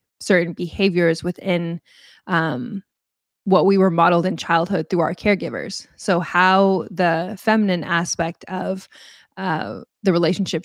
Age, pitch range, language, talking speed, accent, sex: 20-39, 165-195 Hz, English, 125 wpm, American, female